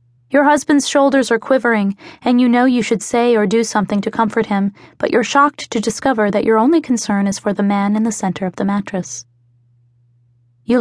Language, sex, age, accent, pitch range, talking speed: English, female, 20-39, American, 195-235 Hz, 205 wpm